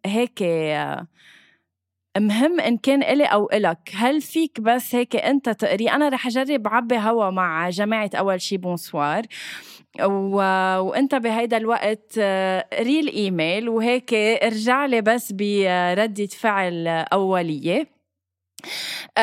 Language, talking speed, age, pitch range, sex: Arabic, 110 wpm, 20-39, 190-240 Hz, female